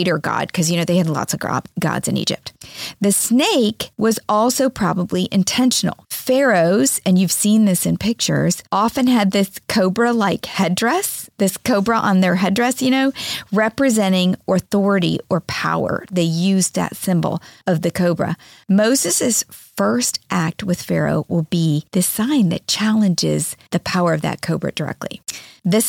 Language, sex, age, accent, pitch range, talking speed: English, female, 40-59, American, 185-235 Hz, 150 wpm